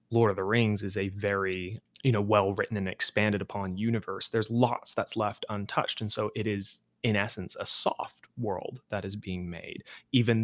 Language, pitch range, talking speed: English, 100-120 Hz, 195 wpm